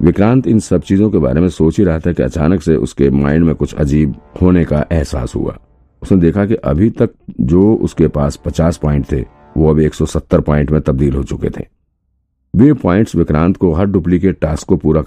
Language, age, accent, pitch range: Hindi, 50-69, native, 75-90 Hz